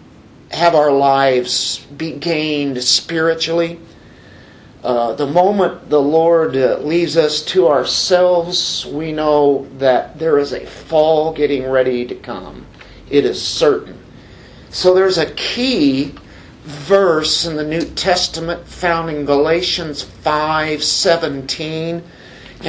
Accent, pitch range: American, 140-170 Hz